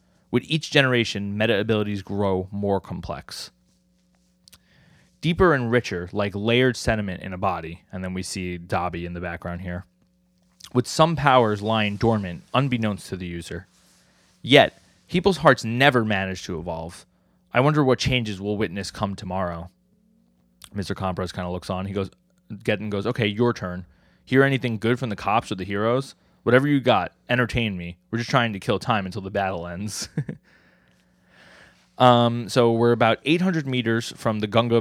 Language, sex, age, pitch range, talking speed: English, male, 20-39, 95-120 Hz, 165 wpm